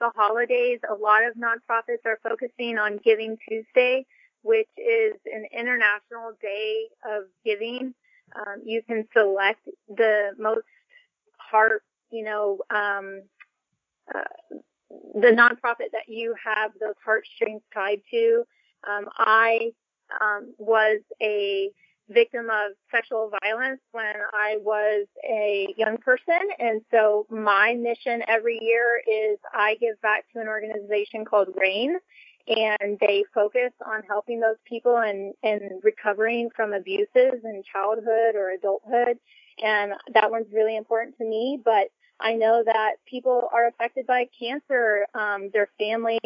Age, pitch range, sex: 30-49, 210-235 Hz, female